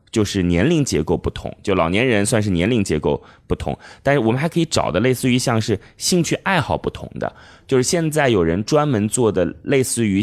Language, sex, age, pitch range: Chinese, male, 20-39, 85-120 Hz